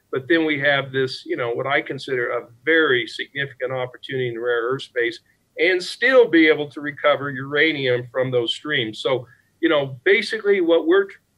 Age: 50-69